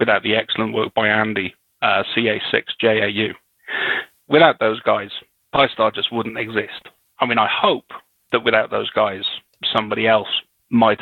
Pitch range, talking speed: 105-120 Hz, 145 wpm